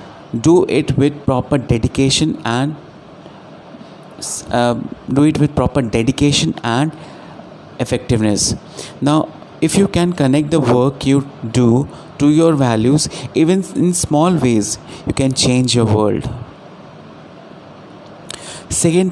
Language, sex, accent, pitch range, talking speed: Hindi, male, native, 120-150 Hz, 115 wpm